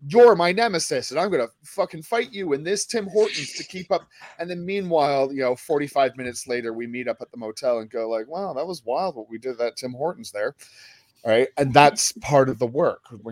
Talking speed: 235 wpm